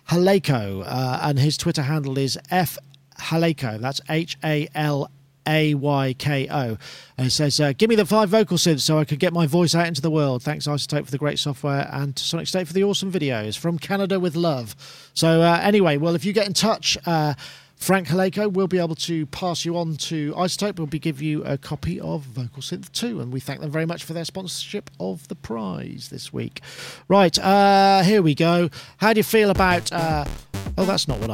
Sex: male